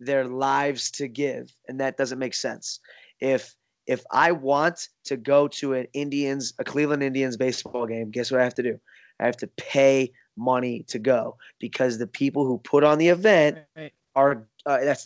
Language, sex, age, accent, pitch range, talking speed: English, male, 20-39, American, 130-160 Hz, 185 wpm